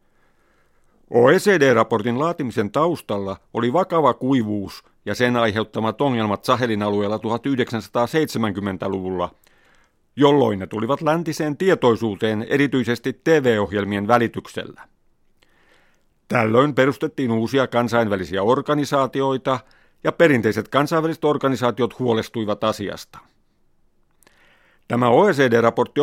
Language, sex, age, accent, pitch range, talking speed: Finnish, male, 50-69, native, 110-150 Hz, 80 wpm